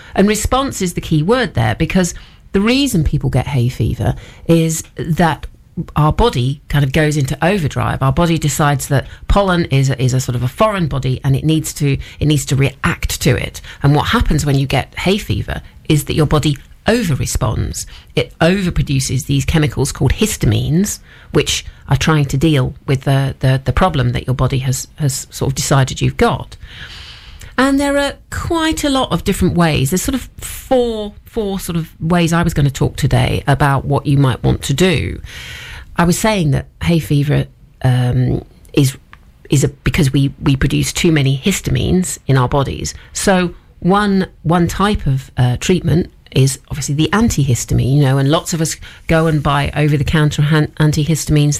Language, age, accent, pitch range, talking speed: English, 40-59, British, 135-170 Hz, 185 wpm